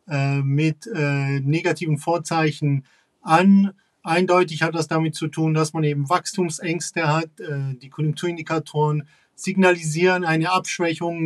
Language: German